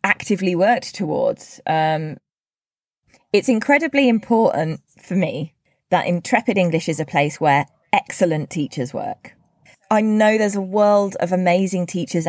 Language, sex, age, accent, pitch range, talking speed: English, female, 20-39, British, 160-210 Hz, 130 wpm